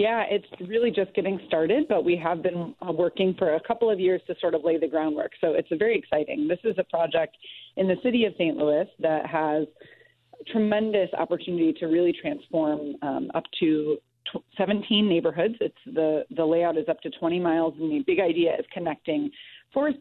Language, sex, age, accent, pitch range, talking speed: English, female, 30-49, American, 160-220 Hz, 200 wpm